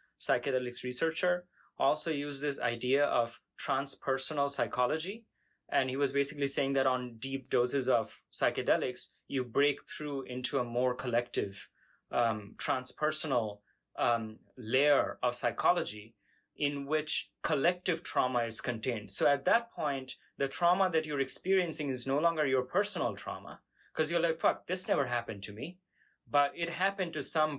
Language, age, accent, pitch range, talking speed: English, 20-39, Indian, 120-150 Hz, 150 wpm